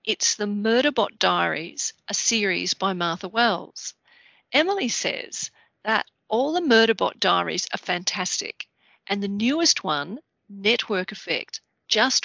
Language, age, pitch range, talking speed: English, 50-69, 185-230 Hz, 120 wpm